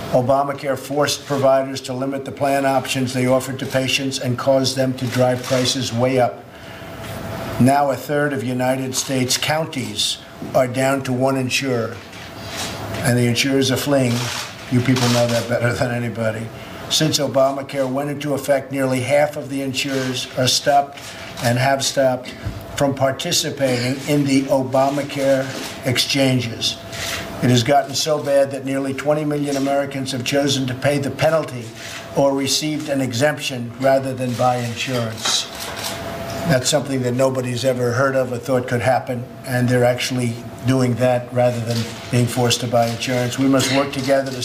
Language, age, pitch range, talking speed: English, 50-69, 120-135 Hz, 160 wpm